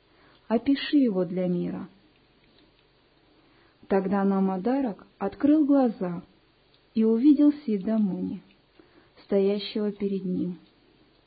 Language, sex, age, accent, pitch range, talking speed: Russian, female, 50-69, native, 195-250 Hz, 75 wpm